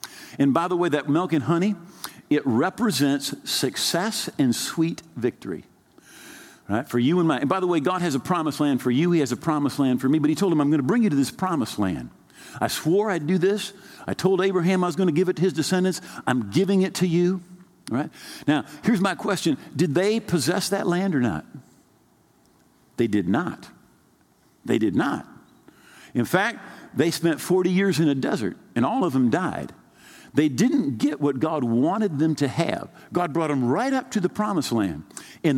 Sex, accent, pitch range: male, American, 150-205 Hz